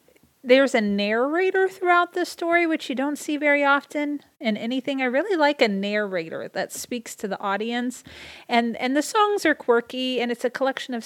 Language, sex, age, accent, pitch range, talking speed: English, female, 40-59, American, 195-270 Hz, 190 wpm